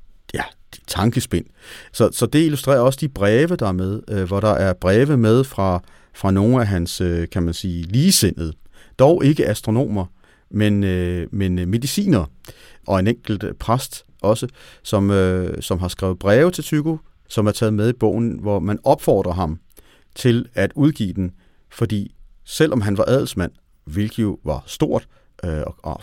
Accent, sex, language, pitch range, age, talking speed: native, male, Danish, 95-130 Hz, 40-59, 170 wpm